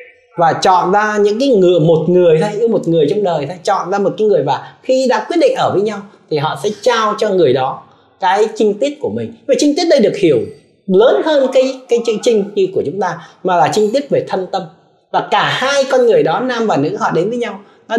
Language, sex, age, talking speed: Vietnamese, male, 20-39, 255 wpm